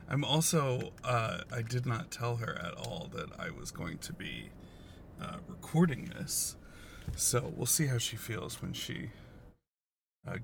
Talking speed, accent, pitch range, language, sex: 160 wpm, American, 105-135 Hz, English, male